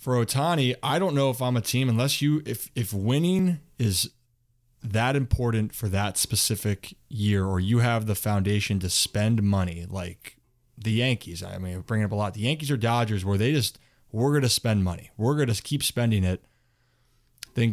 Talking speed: 190 wpm